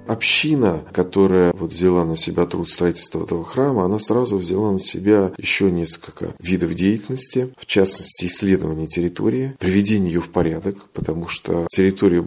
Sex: male